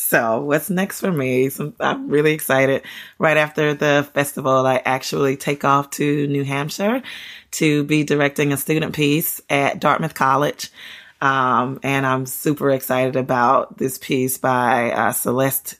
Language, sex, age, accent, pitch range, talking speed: English, female, 20-39, American, 130-150 Hz, 150 wpm